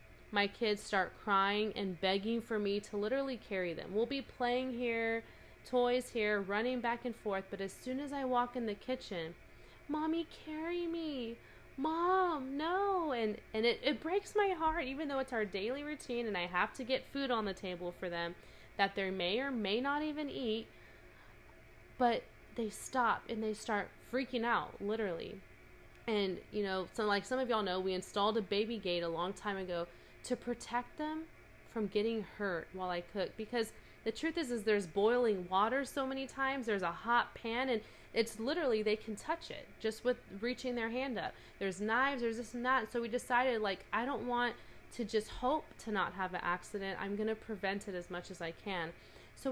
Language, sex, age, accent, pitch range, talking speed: English, female, 20-39, American, 200-255 Hz, 200 wpm